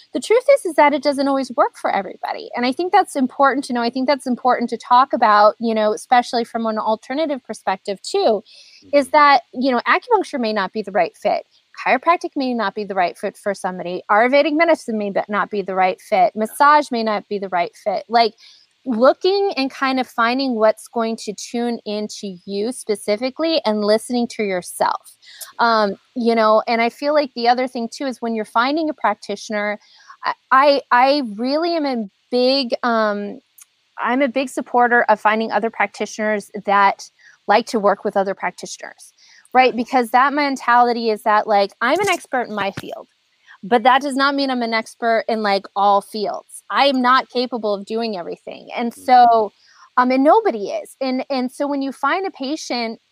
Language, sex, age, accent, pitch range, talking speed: English, female, 30-49, American, 210-275 Hz, 190 wpm